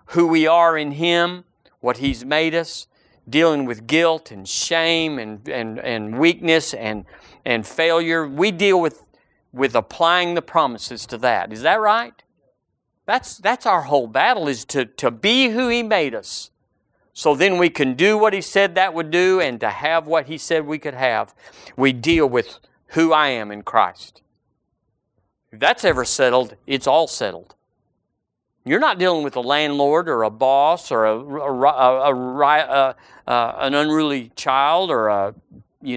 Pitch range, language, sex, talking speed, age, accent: 135-170 Hz, English, male, 170 wpm, 50-69, American